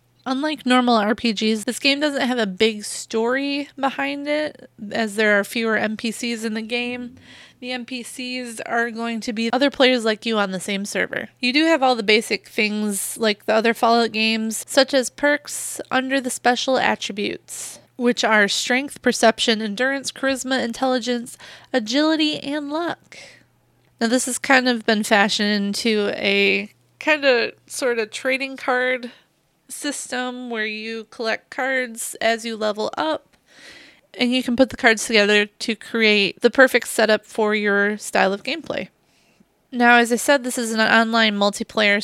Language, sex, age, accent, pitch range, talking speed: English, female, 20-39, American, 215-260 Hz, 160 wpm